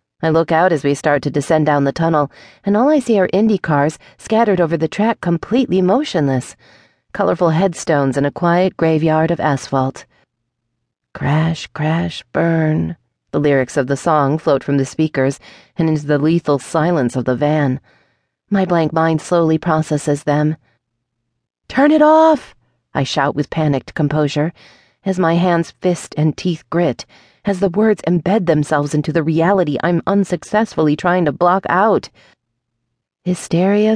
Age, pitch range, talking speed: 30-49, 145-190 Hz, 155 wpm